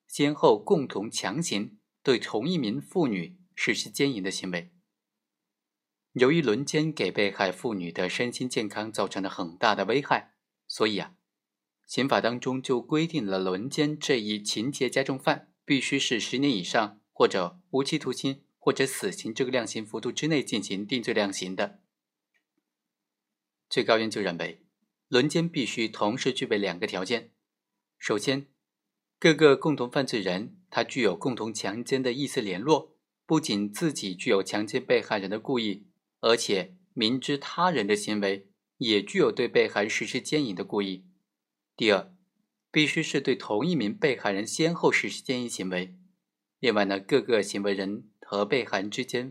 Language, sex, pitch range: Chinese, male, 105-145 Hz